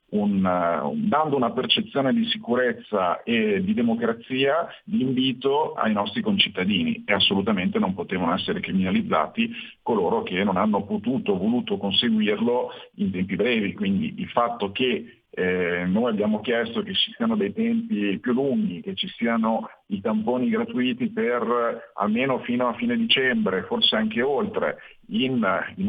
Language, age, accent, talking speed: Italian, 50-69, native, 145 wpm